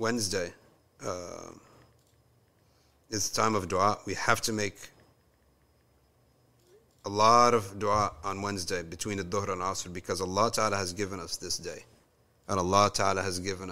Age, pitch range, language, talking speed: 40-59, 95-115 Hz, English, 155 wpm